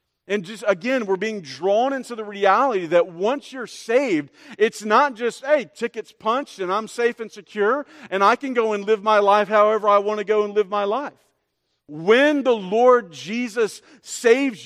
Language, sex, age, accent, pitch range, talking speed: English, male, 40-59, American, 170-230 Hz, 190 wpm